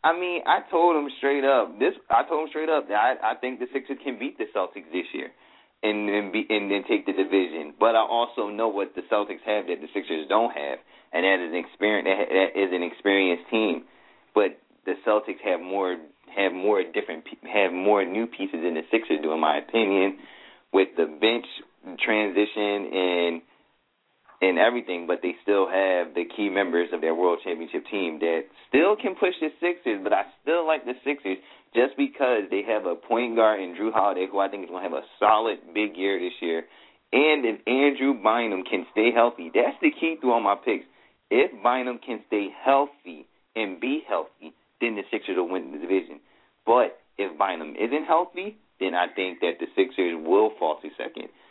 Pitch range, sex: 95-145 Hz, male